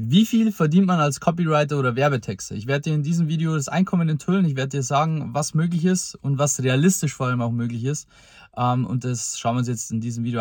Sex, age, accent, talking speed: male, 20-39, German, 235 wpm